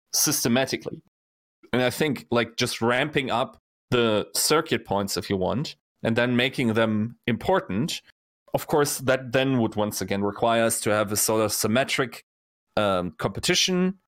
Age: 30-49